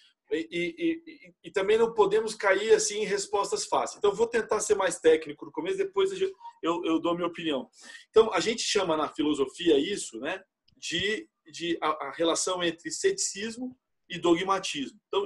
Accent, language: Brazilian, Portuguese